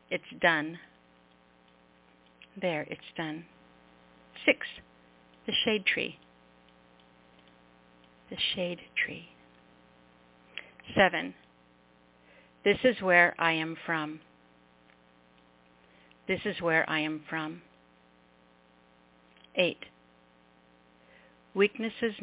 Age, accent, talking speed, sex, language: 60-79, American, 75 wpm, female, English